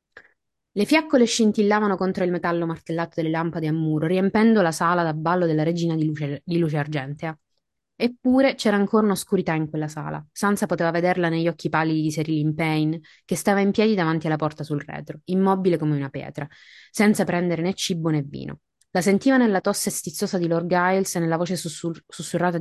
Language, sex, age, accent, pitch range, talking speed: Italian, female, 20-39, native, 160-195 Hz, 190 wpm